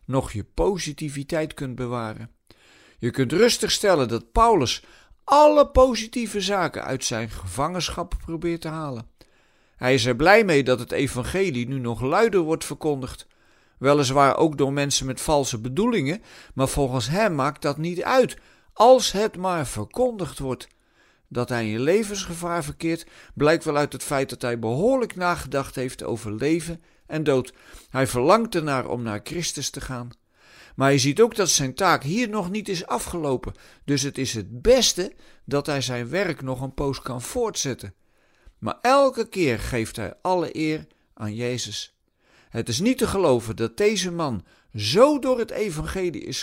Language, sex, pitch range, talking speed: Dutch, male, 125-185 Hz, 165 wpm